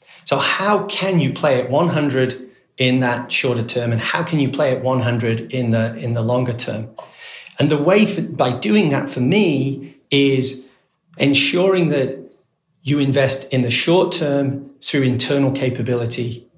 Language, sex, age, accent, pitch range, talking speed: English, male, 40-59, British, 120-155 Hz, 155 wpm